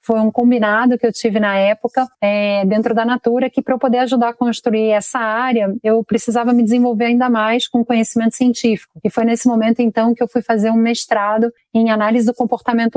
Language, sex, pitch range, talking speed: Portuguese, female, 215-245 Hz, 210 wpm